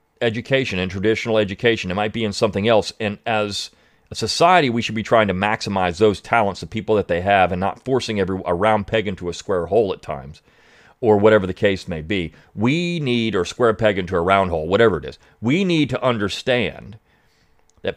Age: 40-59